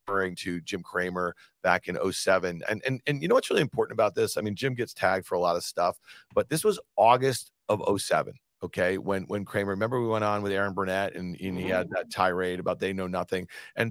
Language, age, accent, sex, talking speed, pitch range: English, 40-59, American, male, 235 wpm, 90-120 Hz